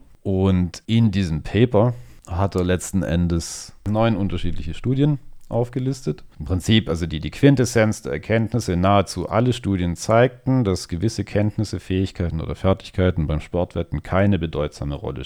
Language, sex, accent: English, male, German